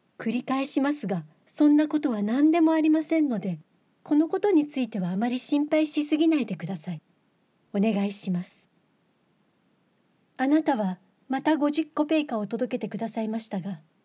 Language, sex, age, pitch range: Japanese, female, 50-69, 200-265 Hz